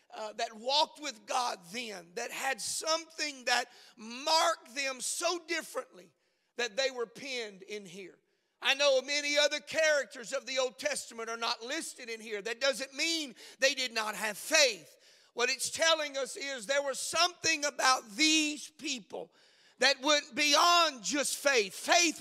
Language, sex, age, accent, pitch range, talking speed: English, male, 40-59, American, 240-315 Hz, 160 wpm